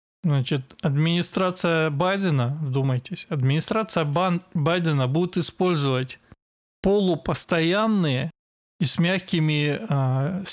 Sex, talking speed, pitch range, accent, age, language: male, 75 wpm, 135-170 Hz, native, 20-39, Russian